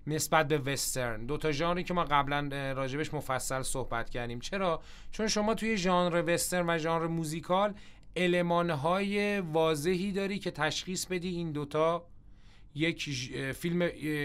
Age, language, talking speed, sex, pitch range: 30-49, Persian, 130 wpm, male, 140-175 Hz